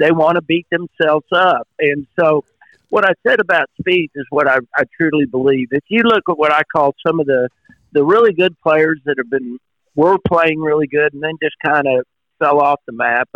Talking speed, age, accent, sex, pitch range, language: 220 wpm, 50-69, American, male, 130-160 Hz, English